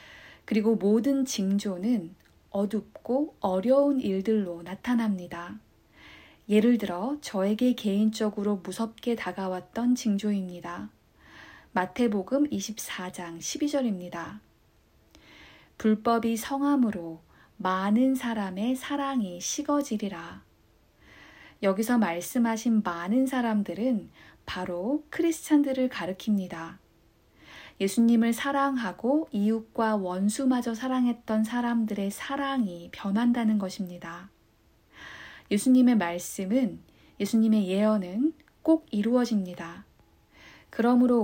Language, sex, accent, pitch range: Korean, female, native, 190-245 Hz